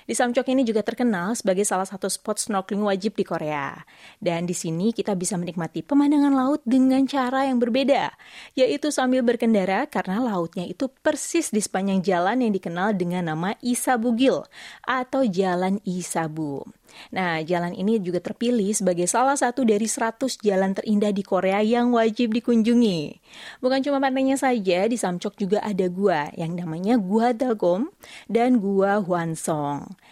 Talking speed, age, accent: 155 wpm, 30-49, Indonesian